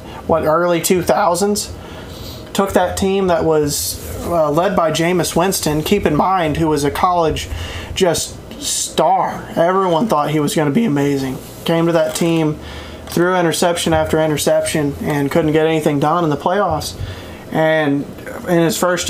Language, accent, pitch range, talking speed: English, American, 145-175 Hz, 155 wpm